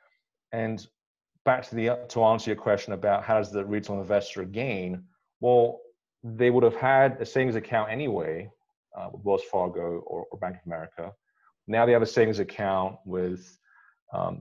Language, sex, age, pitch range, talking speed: English, male, 30-49, 95-120 Hz, 170 wpm